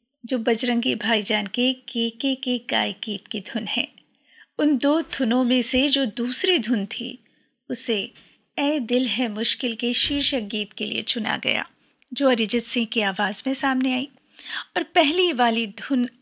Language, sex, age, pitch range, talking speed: Hindi, female, 50-69, 230-295 Hz, 165 wpm